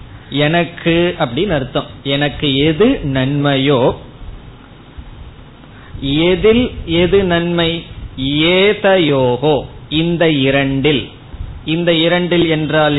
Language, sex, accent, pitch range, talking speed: Tamil, male, native, 130-165 Hz, 50 wpm